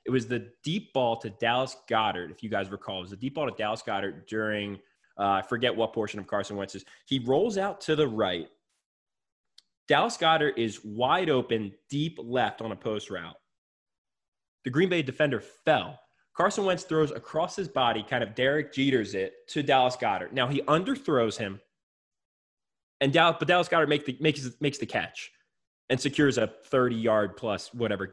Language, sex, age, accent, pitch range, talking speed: English, male, 20-39, American, 115-155 Hz, 170 wpm